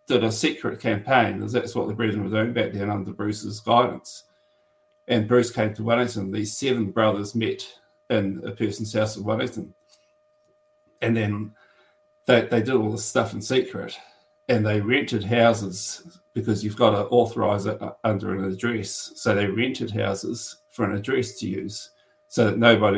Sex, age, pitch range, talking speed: male, 40-59, 110-170 Hz, 170 wpm